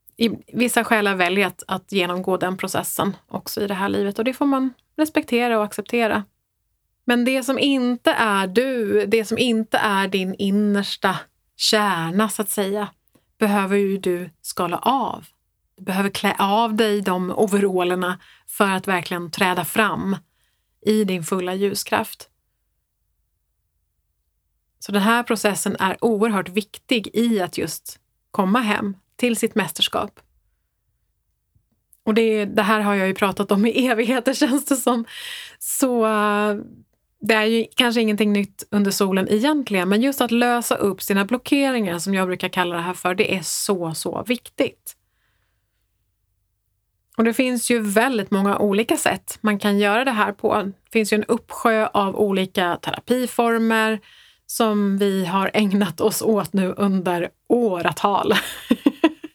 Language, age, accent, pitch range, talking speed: Swedish, 30-49, native, 190-230 Hz, 150 wpm